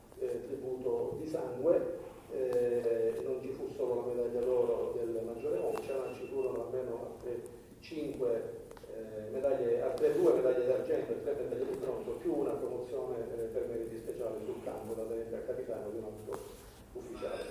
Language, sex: Italian, male